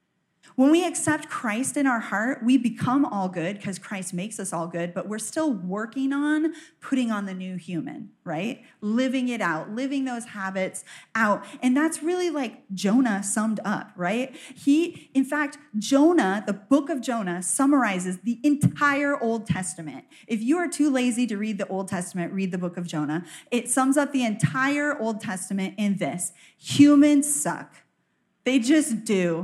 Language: English